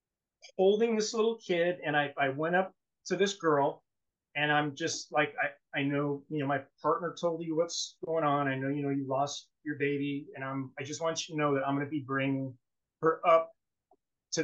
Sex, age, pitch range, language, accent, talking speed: male, 30-49, 140-180 Hz, English, American, 220 wpm